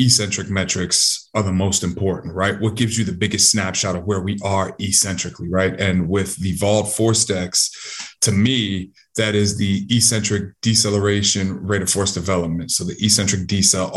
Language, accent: English, American